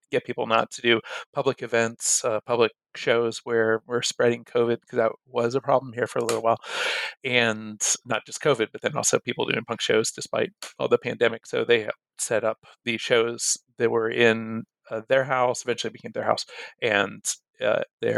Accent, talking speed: American, 190 wpm